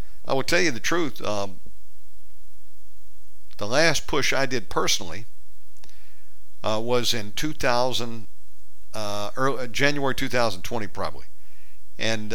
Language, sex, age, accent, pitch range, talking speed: English, male, 50-69, American, 95-125 Hz, 115 wpm